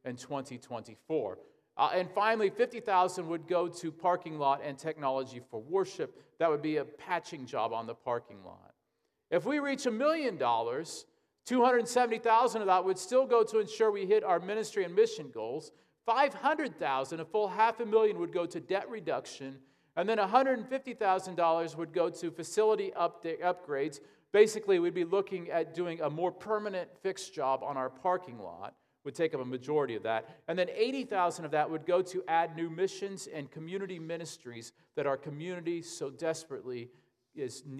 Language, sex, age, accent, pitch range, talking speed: English, male, 40-59, American, 160-230 Hz, 170 wpm